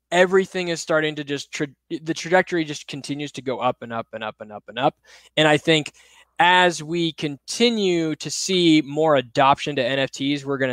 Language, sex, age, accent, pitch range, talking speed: English, male, 10-29, American, 140-170 Hz, 195 wpm